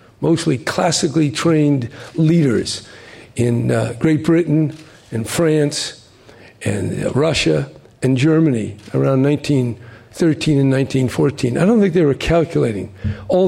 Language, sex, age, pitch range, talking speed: English, male, 50-69, 135-170 Hz, 115 wpm